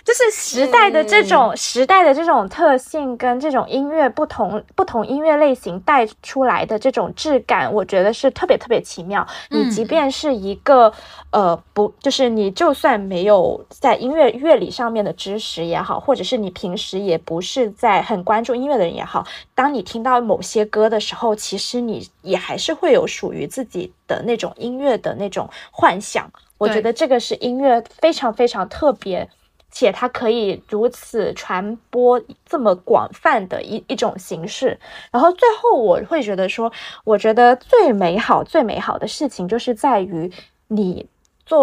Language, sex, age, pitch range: Chinese, female, 20-39, 205-280 Hz